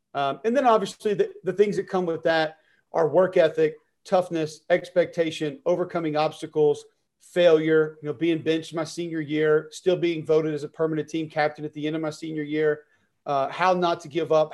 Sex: male